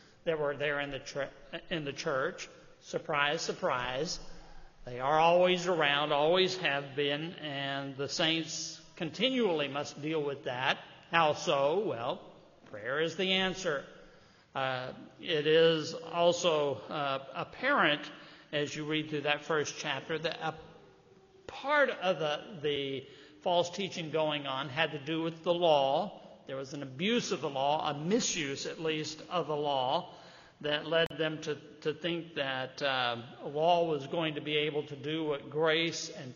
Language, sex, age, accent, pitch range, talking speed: English, male, 60-79, American, 145-170 Hz, 155 wpm